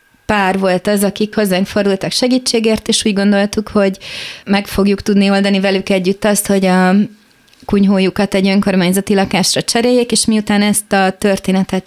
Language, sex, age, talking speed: Hungarian, female, 30-49, 150 wpm